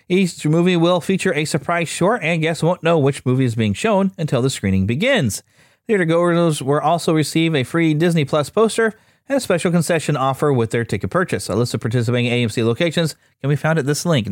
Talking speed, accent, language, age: 215 wpm, American, English, 30-49